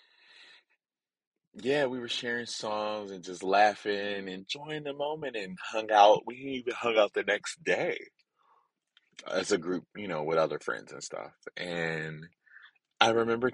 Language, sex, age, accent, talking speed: English, male, 20-39, American, 155 wpm